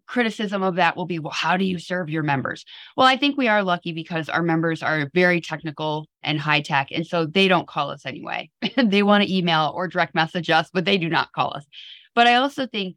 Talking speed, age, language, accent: 240 wpm, 20-39, English, American